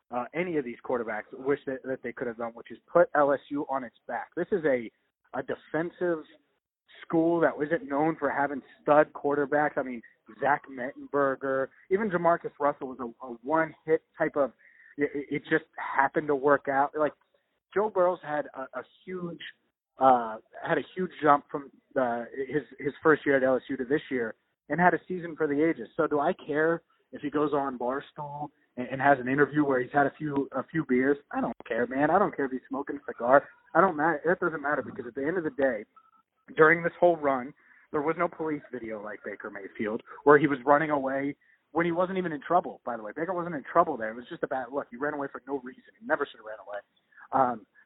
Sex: male